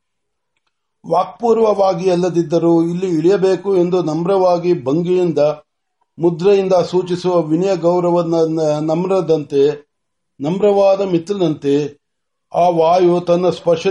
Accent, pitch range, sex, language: native, 160-185 Hz, male, Marathi